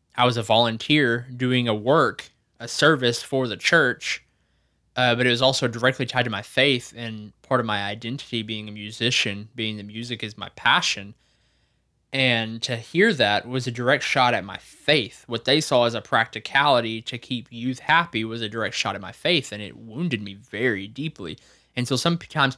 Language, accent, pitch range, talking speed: English, American, 110-130 Hz, 195 wpm